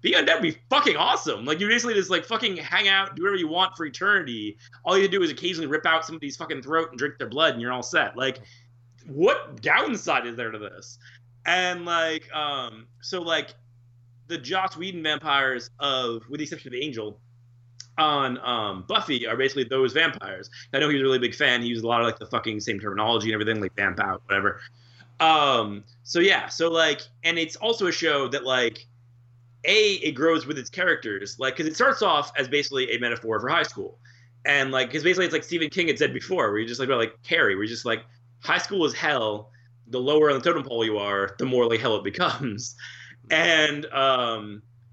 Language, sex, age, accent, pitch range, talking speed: English, male, 30-49, American, 120-160 Hz, 225 wpm